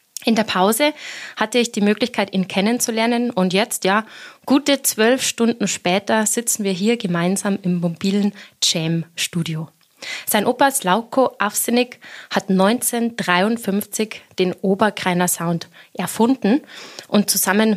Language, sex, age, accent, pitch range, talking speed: German, female, 20-39, German, 185-225 Hz, 120 wpm